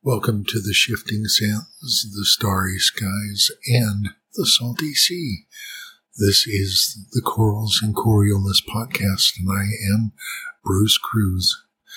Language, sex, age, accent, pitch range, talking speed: English, male, 60-79, American, 100-120 Hz, 120 wpm